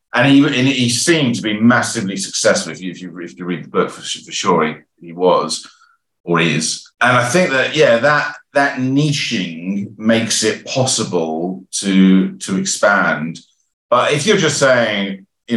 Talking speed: 180 wpm